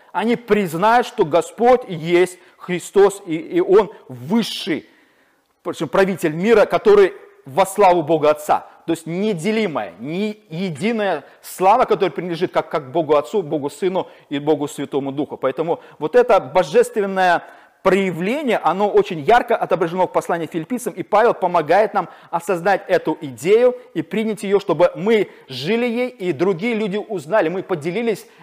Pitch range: 160-205 Hz